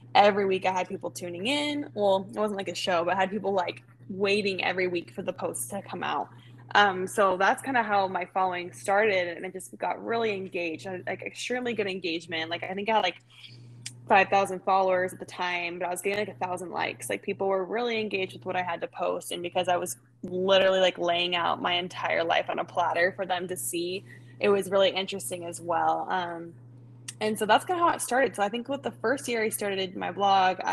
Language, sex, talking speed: English, female, 235 wpm